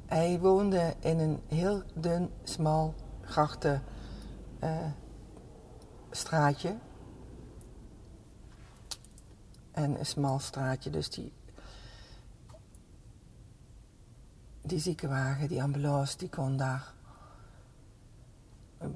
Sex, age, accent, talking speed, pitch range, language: female, 60-79, Dutch, 75 wpm, 105-160 Hz, Dutch